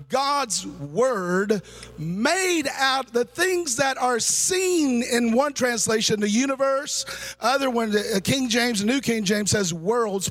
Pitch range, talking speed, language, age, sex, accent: 180-260 Hz, 140 wpm, English, 40-59, male, American